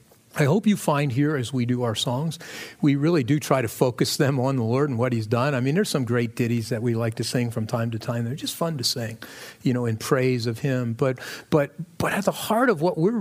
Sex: male